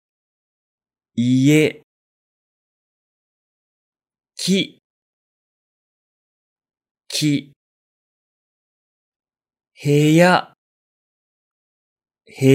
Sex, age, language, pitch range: male, 40-59, Japanese, 115-170 Hz